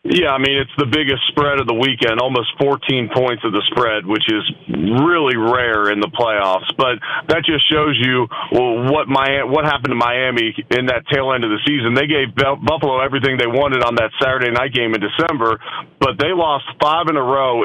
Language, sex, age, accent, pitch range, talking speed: English, male, 40-59, American, 115-145 Hz, 210 wpm